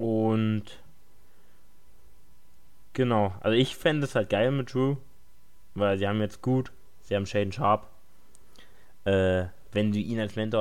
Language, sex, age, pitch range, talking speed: German, male, 20-39, 105-135 Hz, 140 wpm